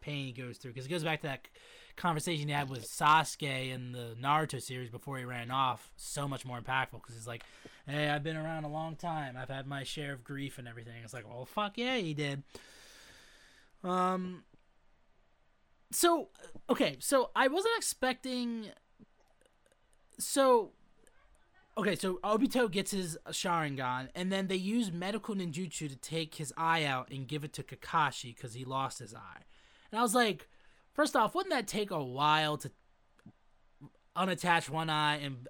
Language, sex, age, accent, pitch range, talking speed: English, male, 20-39, American, 140-200 Hz, 175 wpm